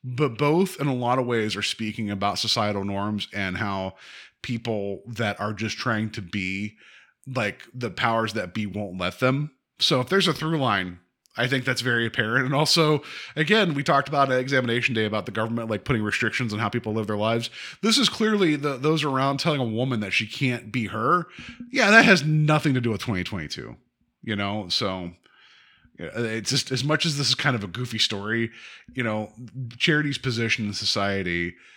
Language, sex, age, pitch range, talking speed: English, male, 30-49, 110-150 Hz, 195 wpm